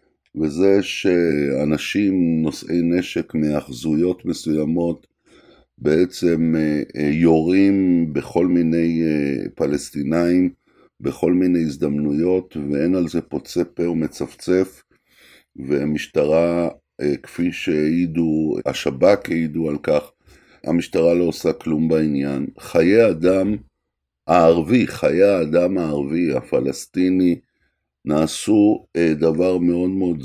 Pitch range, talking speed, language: 80-100 Hz, 85 wpm, Hebrew